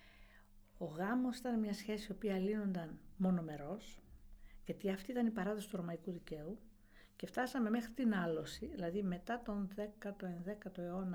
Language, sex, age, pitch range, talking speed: Greek, female, 50-69, 165-215 Hz, 140 wpm